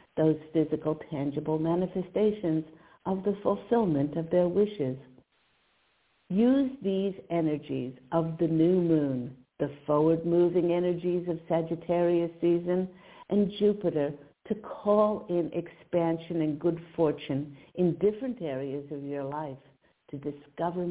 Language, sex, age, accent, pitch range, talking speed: English, female, 60-79, American, 150-185 Hz, 115 wpm